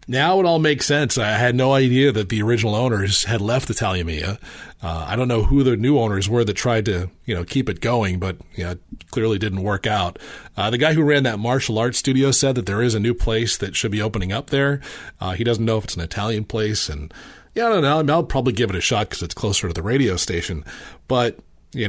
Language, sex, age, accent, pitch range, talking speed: English, male, 40-59, American, 90-125 Hz, 260 wpm